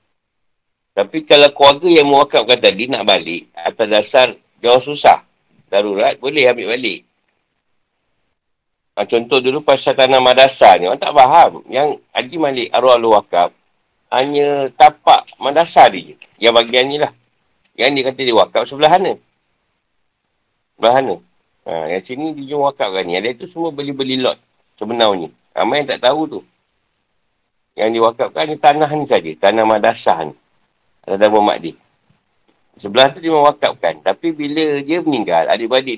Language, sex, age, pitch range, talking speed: Malay, male, 50-69, 115-165 Hz, 145 wpm